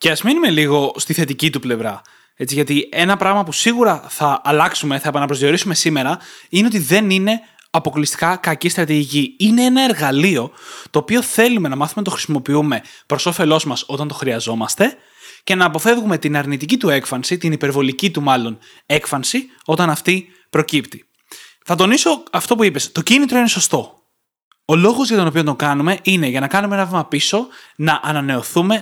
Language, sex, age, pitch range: Greek, male, 20-39, 150-210 Hz